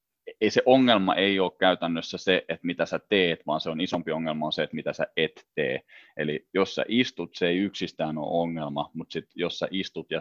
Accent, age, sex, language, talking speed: native, 30-49, male, Finnish, 225 wpm